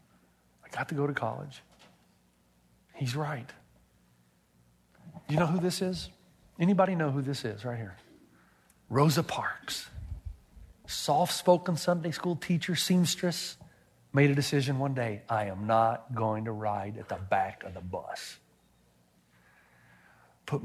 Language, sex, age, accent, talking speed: English, male, 50-69, American, 130 wpm